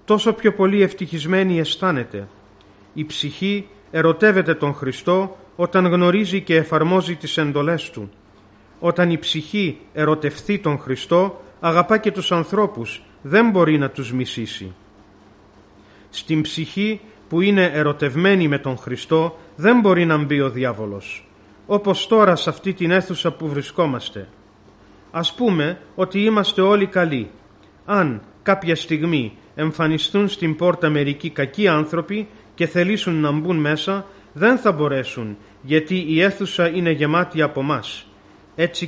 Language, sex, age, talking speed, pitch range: Greek, male, 40-59, 130 wpm, 130-185 Hz